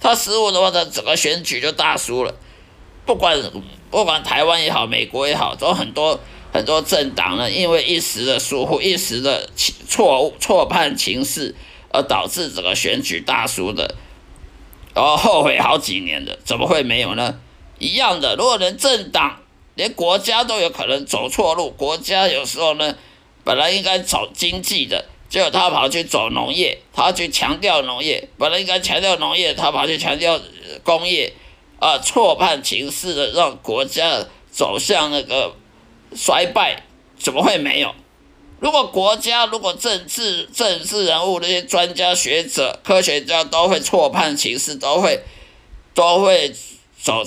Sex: male